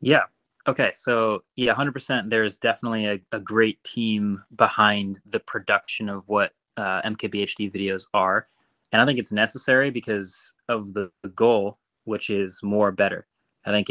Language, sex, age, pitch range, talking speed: English, male, 20-39, 100-120 Hz, 155 wpm